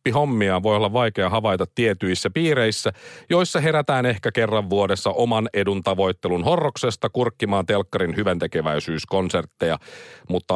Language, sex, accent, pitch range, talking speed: Finnish, male, native, 100-160 Hz, 115 wpm